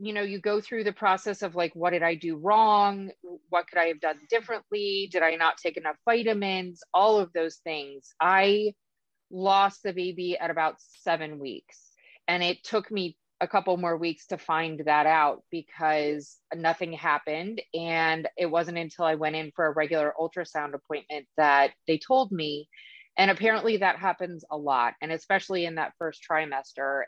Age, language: 30-49, English